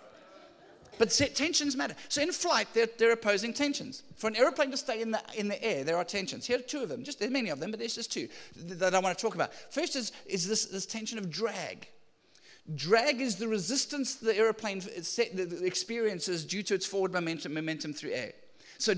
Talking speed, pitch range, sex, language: 200 wpm, 185-245 Hz, male, English